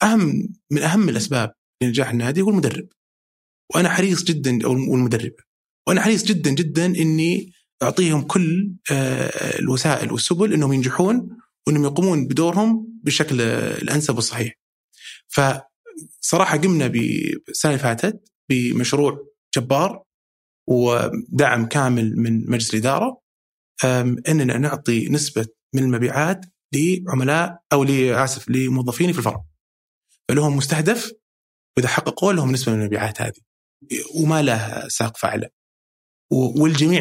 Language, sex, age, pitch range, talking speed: Arabic, male, 30-49, 125-170 Hz, 105 wpm